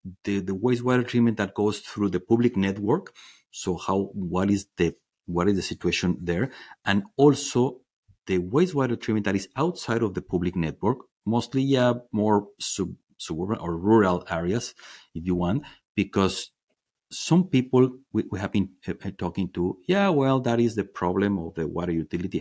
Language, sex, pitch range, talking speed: English, male, 90-120 Hz, 165 wpm